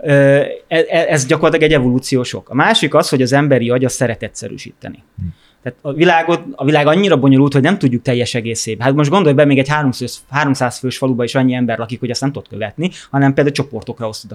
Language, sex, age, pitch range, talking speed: Hungarian, male, 20-39, 120-140 Hz, 205 wpm